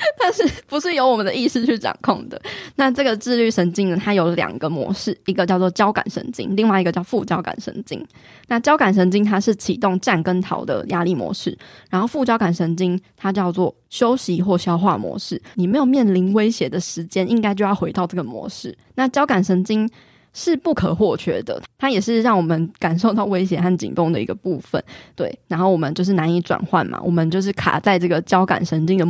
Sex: female